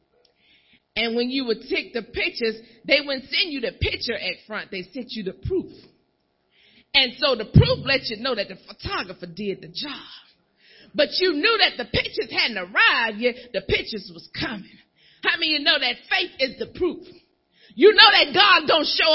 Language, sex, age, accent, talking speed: English, female, 40-59, American, 195 wpm